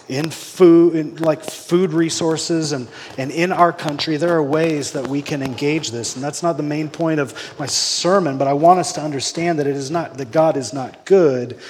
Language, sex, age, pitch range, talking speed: English, male, 30-49, 120-155 Hz, 215 wpm